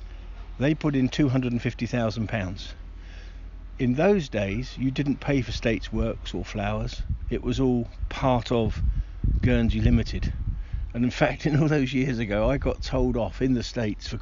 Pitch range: 90-125 Hz